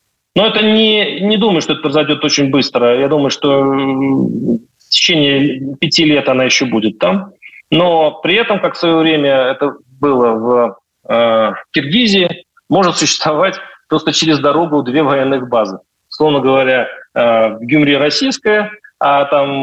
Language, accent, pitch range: Russian, native, 135-170 Hz